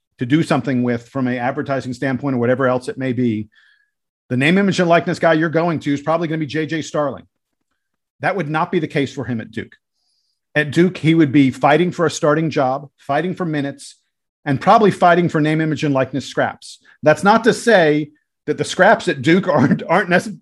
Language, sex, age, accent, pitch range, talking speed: English, male, 50-69, American, 135-170 Hz, 215 wpm